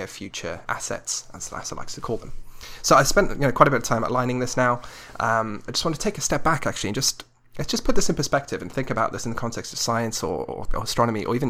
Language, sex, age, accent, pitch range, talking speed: English, male, 20-39, British, 110-140 Hz, 280 wpm